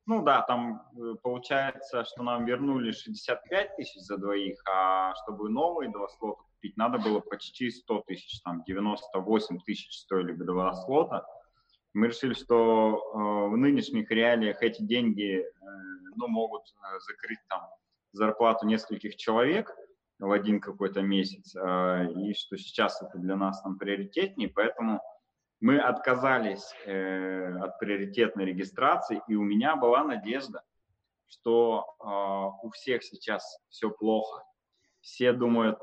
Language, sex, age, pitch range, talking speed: Russian, male, 30-49, 100-125 Hz, 125 wpm